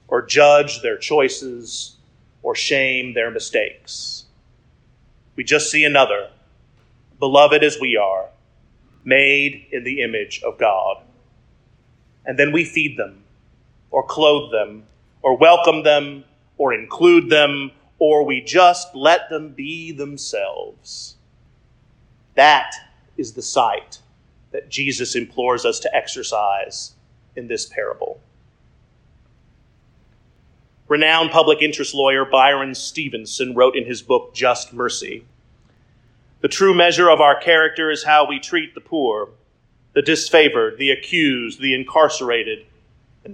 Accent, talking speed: American, 120 wpm